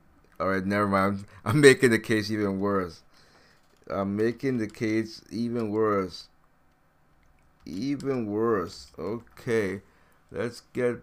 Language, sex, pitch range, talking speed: English, male, 110-135 Hz, 115 wpm